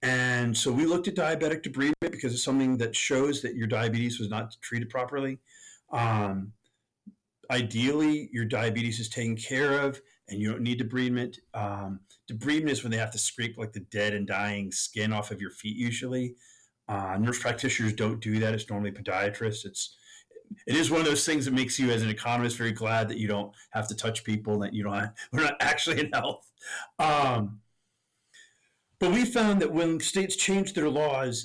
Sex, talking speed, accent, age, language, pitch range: male, 195 wpm, American, 40-59, English, 115-155 Hz